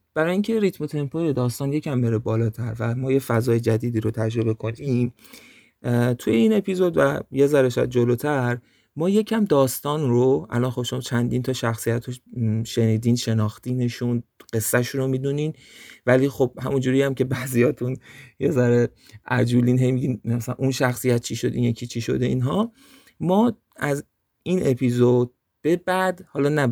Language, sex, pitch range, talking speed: Persian, male, 115-140 Hz, 150 wpm